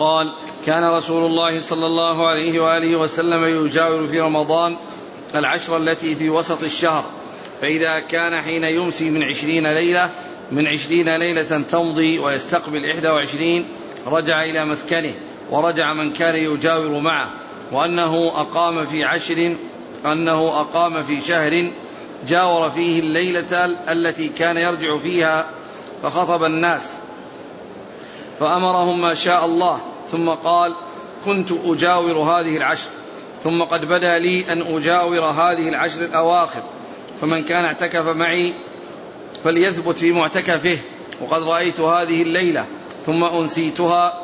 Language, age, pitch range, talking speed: Arabic, 40-59, 160-175 Hz, 120 wpm